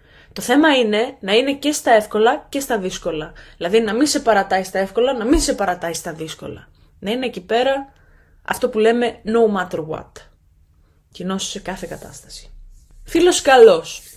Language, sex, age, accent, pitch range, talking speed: Greek, female, 20-39, native, 170-235 Hz, 170 wpm